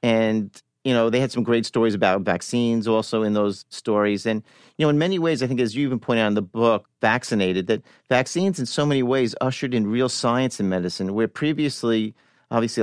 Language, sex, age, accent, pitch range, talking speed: English, male, 50-69, American, 105-120 Hz, 215 wpm